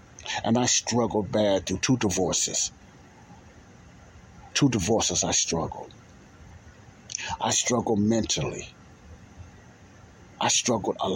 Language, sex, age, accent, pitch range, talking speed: English, male, 60-79, American, 100-120 Hz, 90 wpm